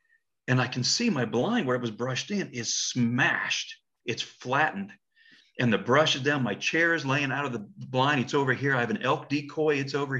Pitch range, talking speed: 115-155 Hz, 225 wpm